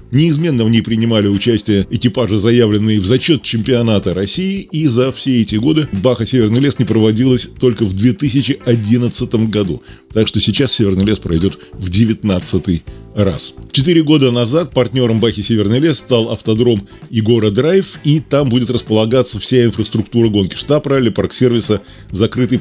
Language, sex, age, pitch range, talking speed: Russian, male, 20-39, 105-130 Hz, 150 wpm